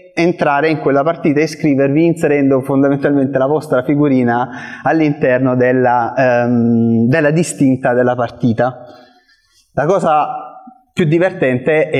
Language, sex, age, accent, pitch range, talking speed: Italian, male, 20-39, native, 125-160 Hz, 115 wpm